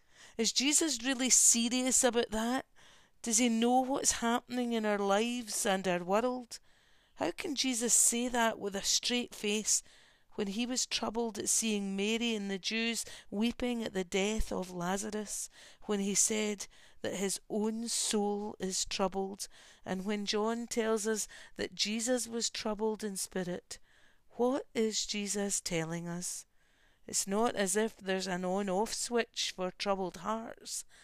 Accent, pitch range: British, 185-230 Hz